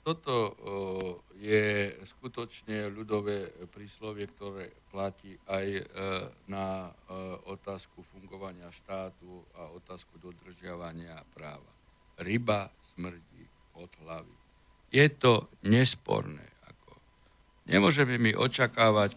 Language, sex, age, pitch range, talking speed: Slovak, male, 60-79, 95-115 Hz, 85 wpm